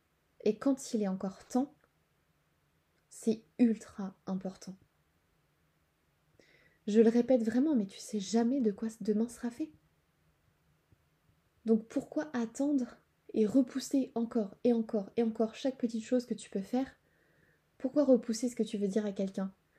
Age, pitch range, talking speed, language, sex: 20-39, 210-245 Hz, 145 wpm, French, female